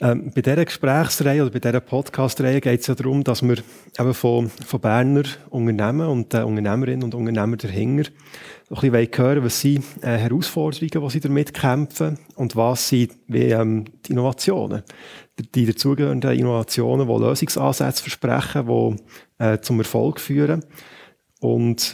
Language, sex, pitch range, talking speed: German, male, 120-140 Hz, 155 wpm